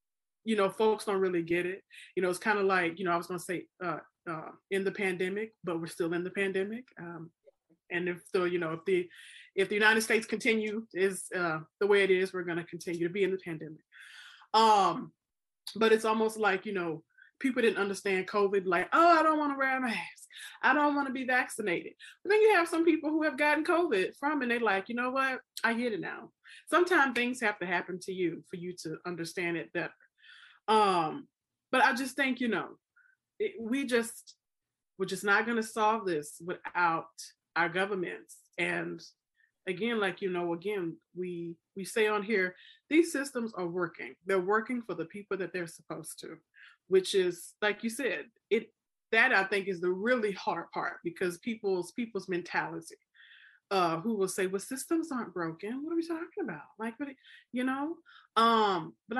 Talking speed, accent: 205 wpm, American